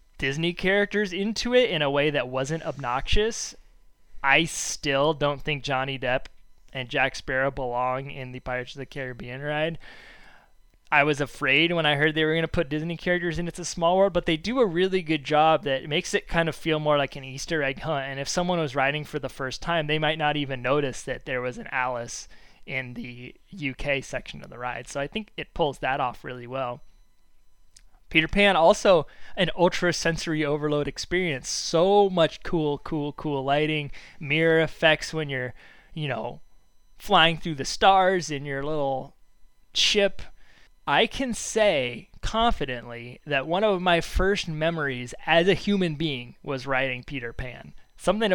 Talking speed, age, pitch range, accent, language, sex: 180 wpm, 20-39, 130-165 Hz, American, English, male